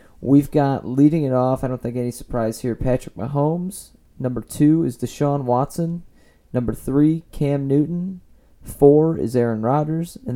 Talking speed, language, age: 155 wpm, English, 30-49